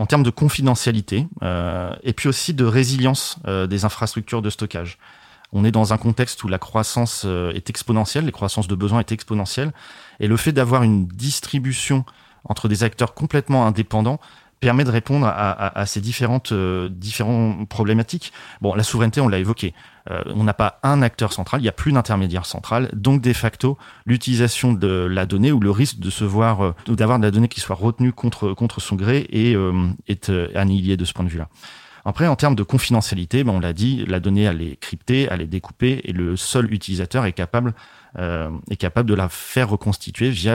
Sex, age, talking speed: male, 30-49, 205 wpm